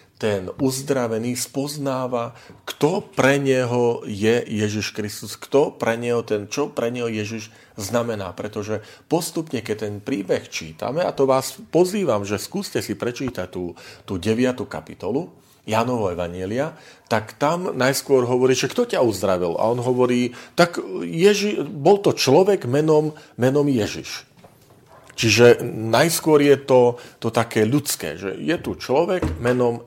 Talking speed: 135 wpm